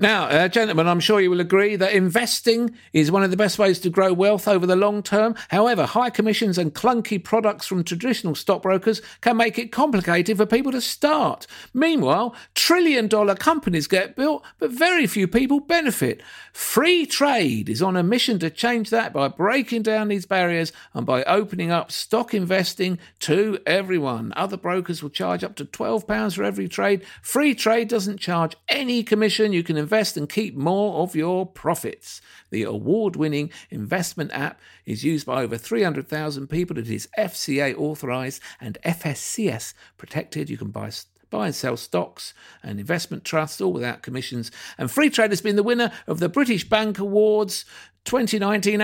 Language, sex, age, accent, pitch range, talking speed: English, male, 50-69, British, 165-220 Hz, 170 wpm